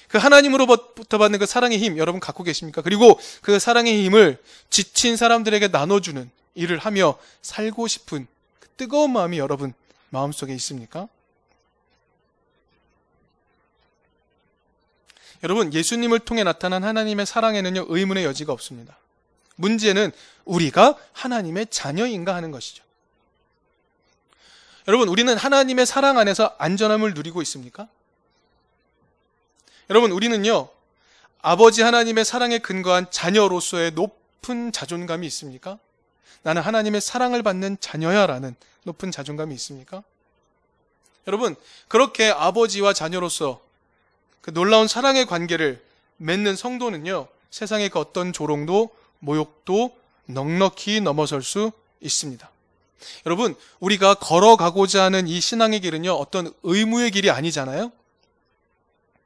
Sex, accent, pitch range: male, native, 165-225 Hz